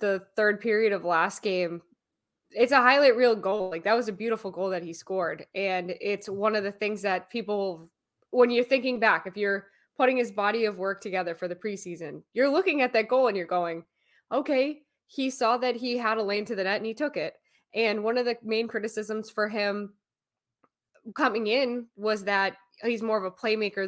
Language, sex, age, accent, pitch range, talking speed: English, female, 20-39, American, 195-245 Hz, 210 wpm